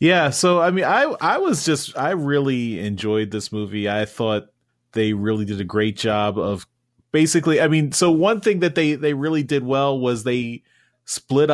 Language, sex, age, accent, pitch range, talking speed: English, male, 30-49, American, 105-125 Hz, 190 wpm